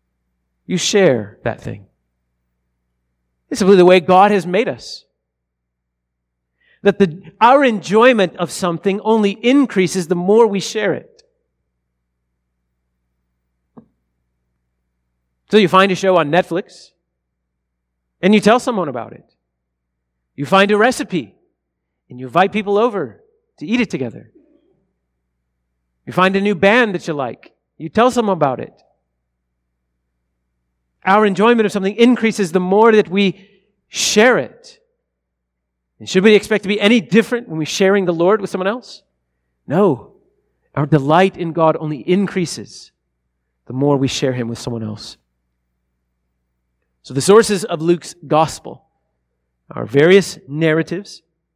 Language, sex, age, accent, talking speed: English, male, 40-59, American, 135 wpm